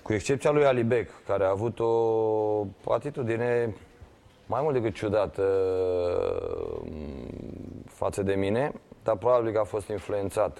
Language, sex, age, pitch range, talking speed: Romanian, male, 20-39, 100-125 Hz, 125 wpm